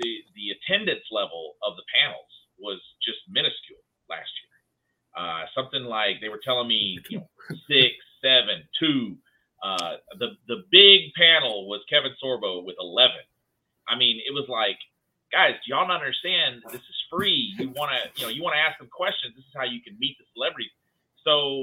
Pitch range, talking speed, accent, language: 115-150 Hz, 185 wpm, American, English